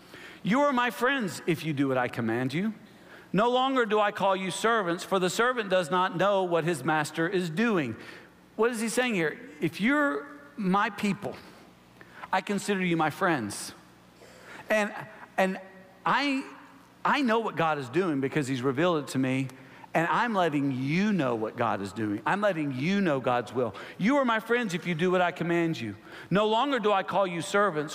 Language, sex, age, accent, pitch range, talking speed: English, male, 50-69, American, 140-195 Hz, 195 wpm